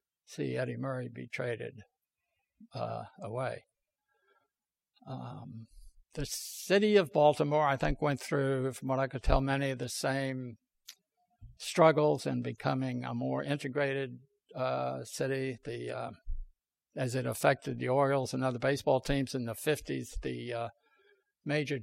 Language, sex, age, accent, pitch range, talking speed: English, male, 60-79, American, 115-145 Hz, 135 wpm